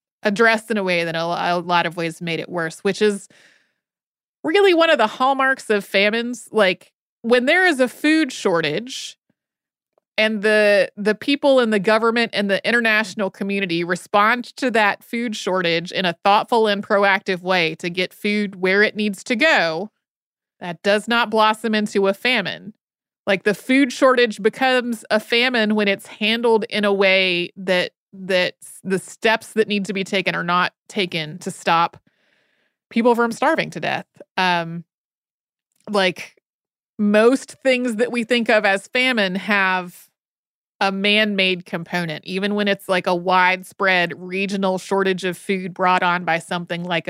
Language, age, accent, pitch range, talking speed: English, 30-49, American, 185-225 Hz, 160 wpm